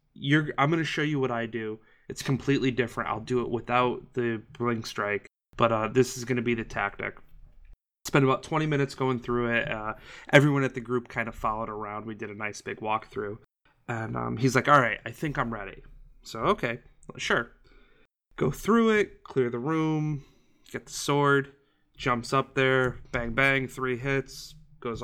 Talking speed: 185 wpm